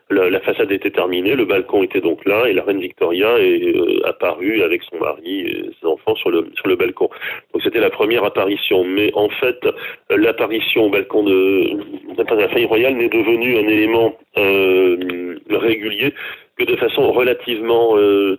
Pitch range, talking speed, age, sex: 340-425 Hz, 180 wpm, 40-59, male